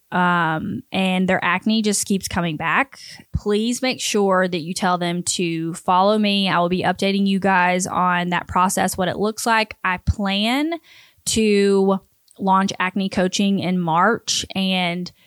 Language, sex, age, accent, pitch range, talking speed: English, female, 20-39, American, 185-215 Hz, 155 wpm